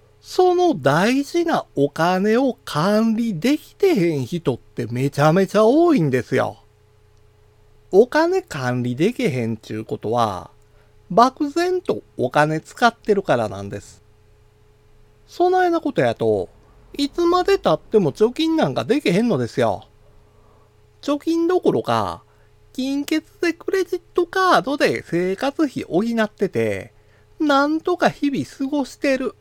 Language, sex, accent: Japanese, male, native